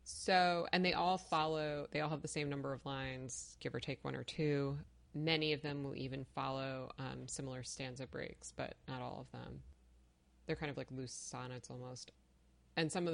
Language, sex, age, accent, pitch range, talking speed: English, female, 30-49, American, 125-155 Hz, 200 wpm